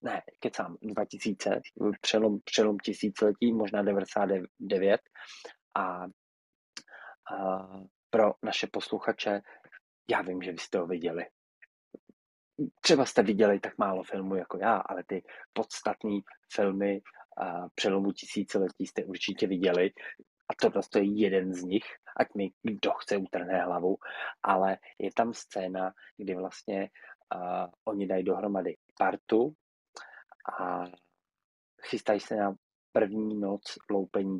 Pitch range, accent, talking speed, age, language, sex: 90-105 Hz, native, 120 wpm, 20-39, Czech, male